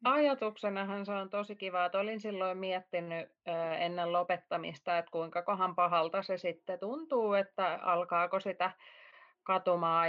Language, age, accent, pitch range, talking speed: Finnish, 30-49, native, 180-220 Hz, 135 wpm